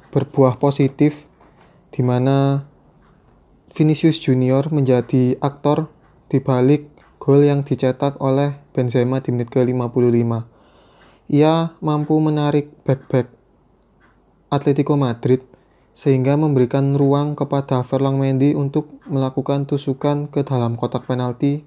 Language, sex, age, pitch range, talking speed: Indonesian, male, 20-39, 130-155 Hz, 100 wpm